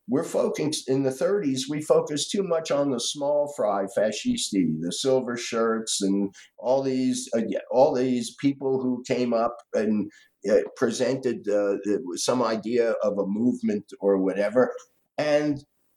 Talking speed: 150 wpm